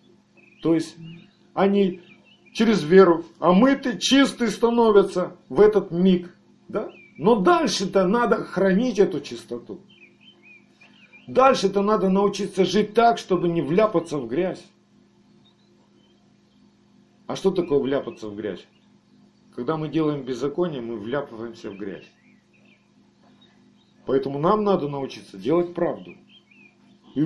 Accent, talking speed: native, 110 wpm